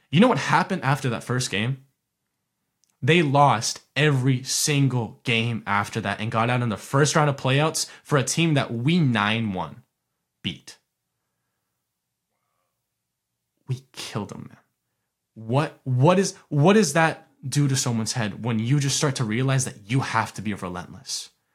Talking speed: 155 wpm